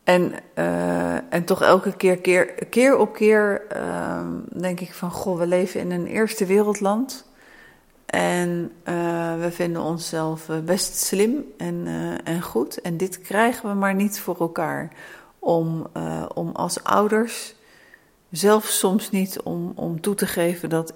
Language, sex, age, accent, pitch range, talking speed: Dutch, female, 40-59, Dutch, 165-200 Hz, 150 wpm